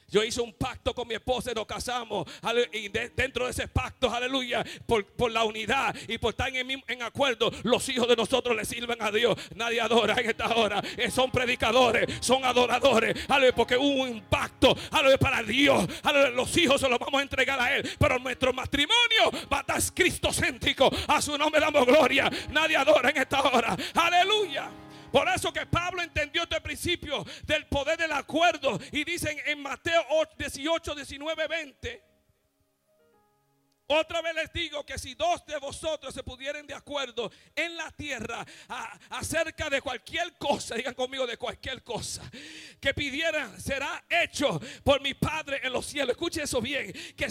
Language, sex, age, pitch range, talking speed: English, male, 50-69, 250-320 Hz, 170 wpm